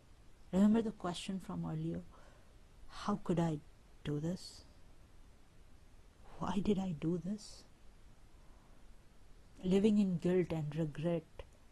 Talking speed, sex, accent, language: 100 wpm, female, Indian, English